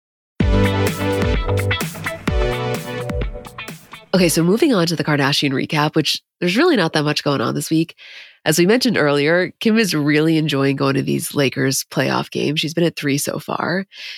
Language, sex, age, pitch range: English, female, 20-39, 145-175 Hz